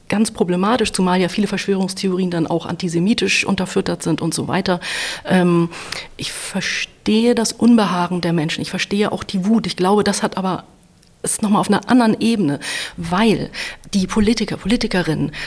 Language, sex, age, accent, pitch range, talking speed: German, female, 40-59, German, 185-220 Hz, 155 wpm